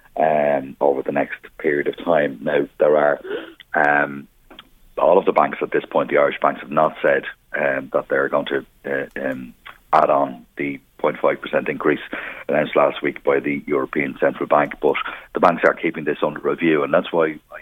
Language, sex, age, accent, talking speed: English, male, 30-49, Irish, 195 wpm